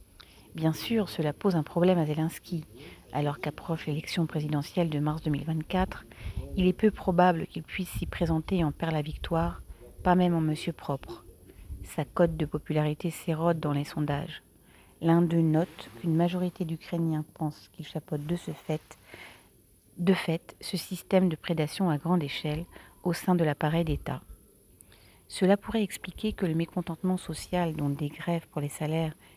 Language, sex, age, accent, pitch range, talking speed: French, female, 40-59, French, 150-175 Hz, 165 wpm